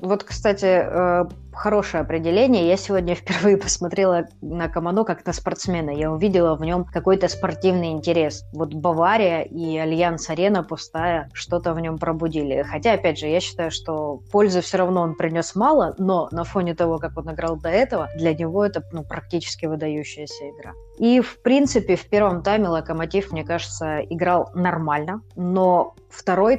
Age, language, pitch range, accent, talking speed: 20-39, Russian, 155-180 Hz, native, 160 wpm